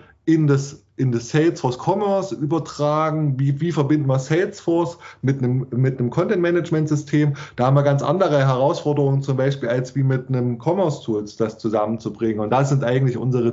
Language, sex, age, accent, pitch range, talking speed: German, male, 20-39, German, 115-140 Hz, 165 wpm